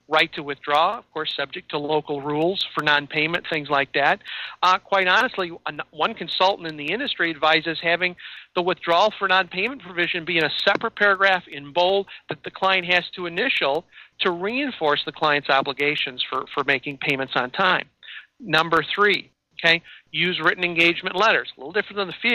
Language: English